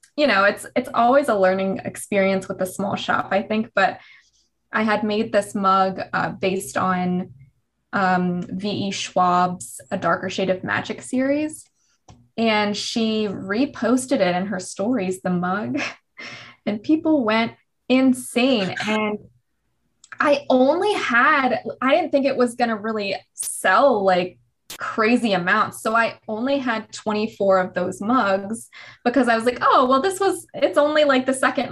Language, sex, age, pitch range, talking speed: English, female, 20-39, 195-260 Hz, 155 wpm